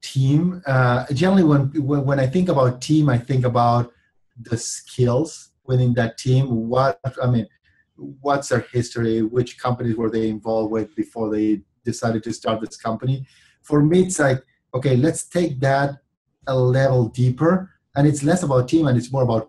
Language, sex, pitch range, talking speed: English, male, 125-155 Hz, 175 wpm